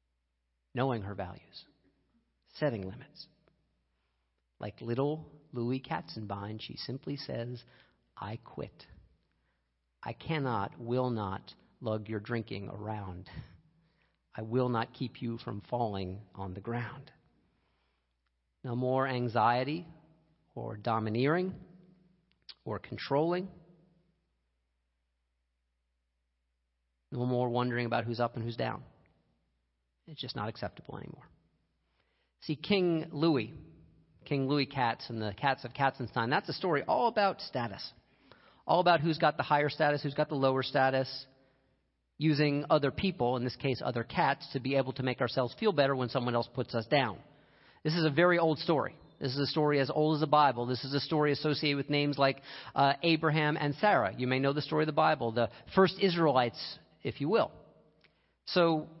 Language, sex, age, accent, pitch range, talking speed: English, male, 50-69, American, 100-150 Hz, 150 wpm